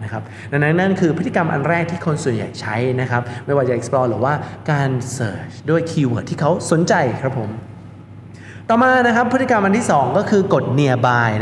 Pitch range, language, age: 125-175 Hz, Thai, 20-39